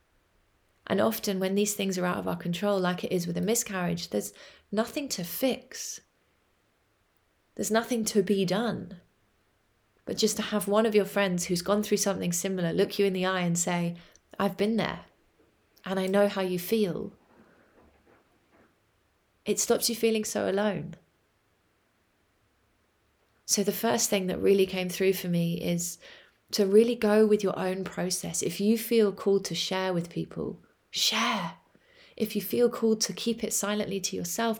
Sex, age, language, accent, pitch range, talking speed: female, 30-49, English, British, 170-210 Hz, 170 wpm